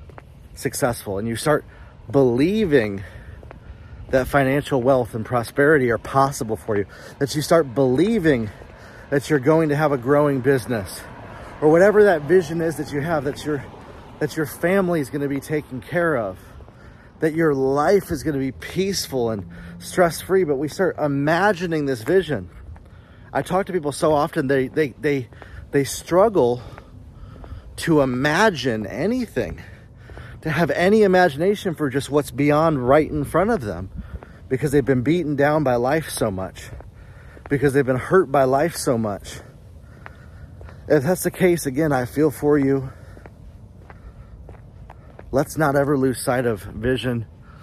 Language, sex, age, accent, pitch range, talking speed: English, male, 30-49, American, 110-150 Hz, 150 wpm